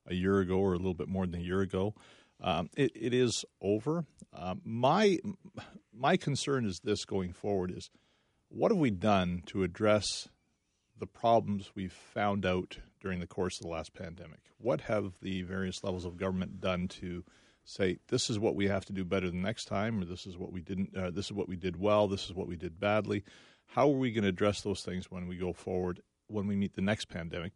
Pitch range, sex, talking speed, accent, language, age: 95-110 Hz, male, 220 wpm, American, English, 40-59